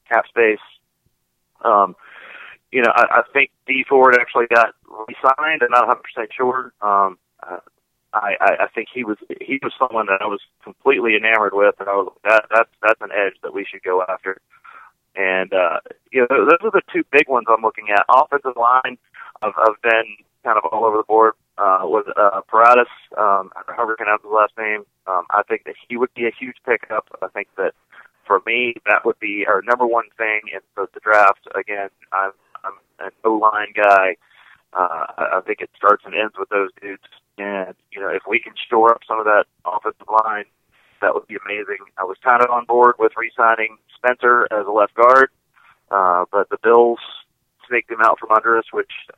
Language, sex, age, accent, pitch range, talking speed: English, male, 40-59, American, 105-130 Hz, 205 wpm